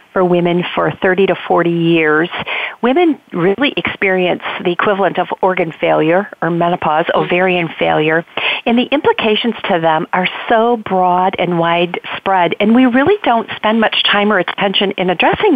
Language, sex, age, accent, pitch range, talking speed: English, female, 50-69, American, 180-225 Hz, 155 wpm